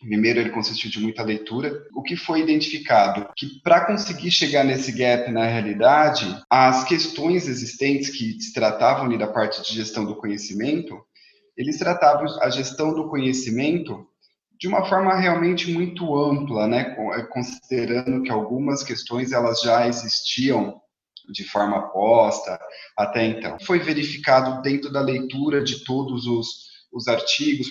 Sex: male